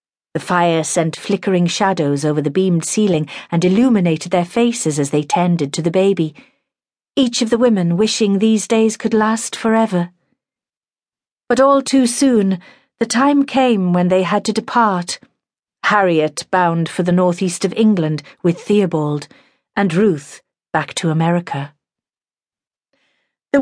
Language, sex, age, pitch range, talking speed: English, female, 40-59, 175-225 Hz, 140 wpm